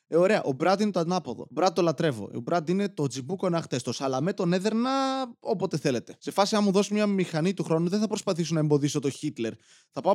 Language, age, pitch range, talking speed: Greek, 20-39, 140-195 Hz, 240 wpm